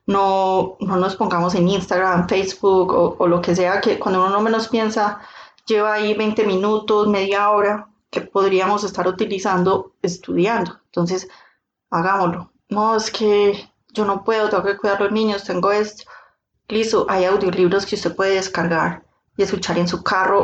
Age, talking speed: 20-39, 165 wpm